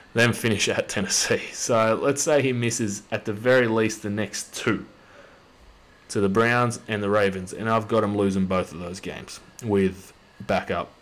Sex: male